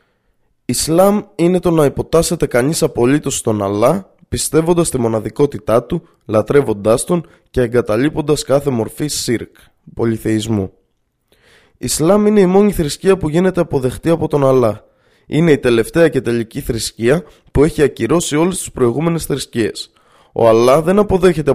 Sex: male